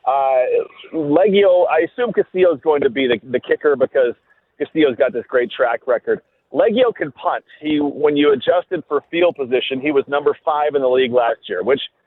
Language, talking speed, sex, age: English, 195 wpm, male, 40-59